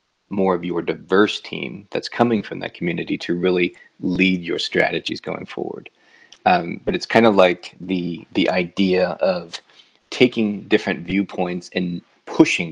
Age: 30-49